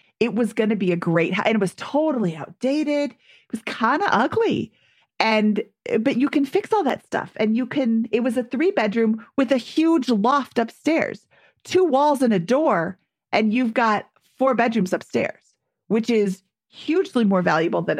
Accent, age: American, 40-59